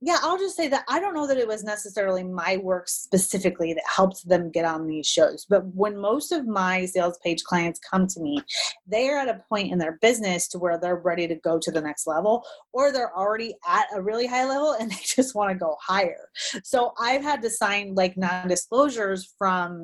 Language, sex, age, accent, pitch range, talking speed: English, female, 30-49, American, 175-220 Hz, 225 wpm